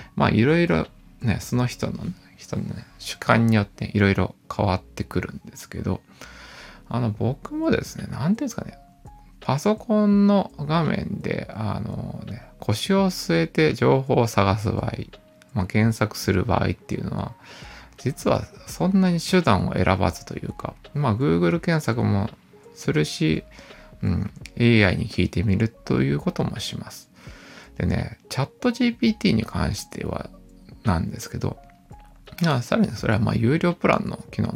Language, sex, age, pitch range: Japanese, male, 20-39, 105-170 Hz